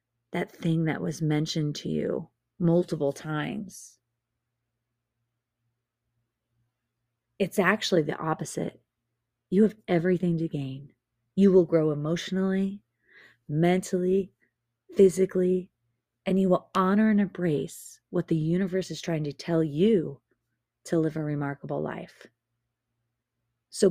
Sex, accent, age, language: female, American, 30-49, English